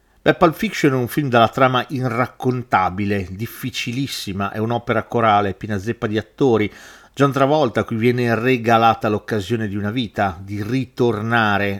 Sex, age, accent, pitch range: male, 40-59, native, 110-145 Hz